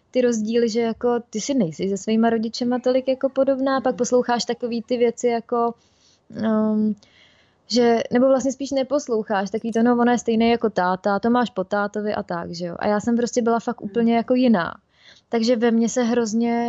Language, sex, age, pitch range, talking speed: Czech, female, 20-39, 215-240 Hz, 195 wpm